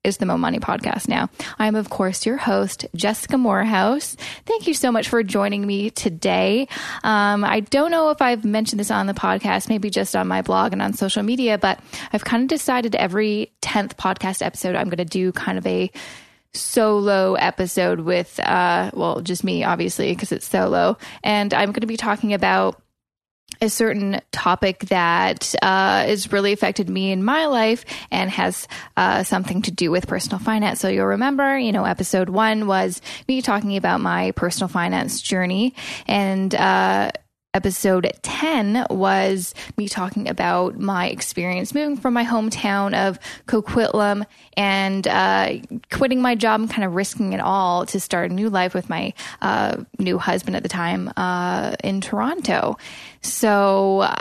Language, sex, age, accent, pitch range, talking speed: English, female, 10-29, American, 190-225 Hz, 175 wpm